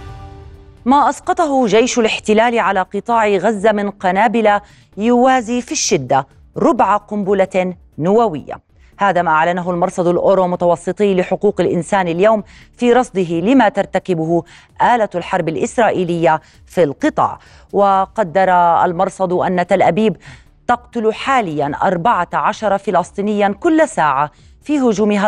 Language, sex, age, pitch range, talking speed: Arabic, female, 30-49, 165-220 Hz, 110 wpm